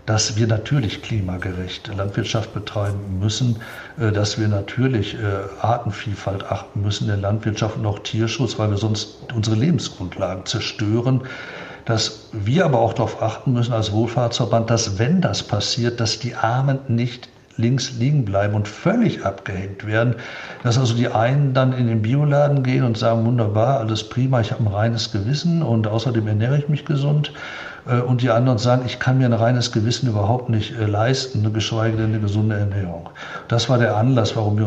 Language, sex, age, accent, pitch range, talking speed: German, male, 60-79, German, 105-125 Hz, 170 wpm